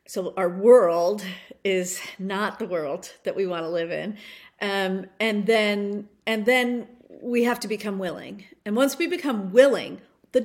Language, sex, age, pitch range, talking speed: English, female, 40-59, 195-260 Hz, 165 wpm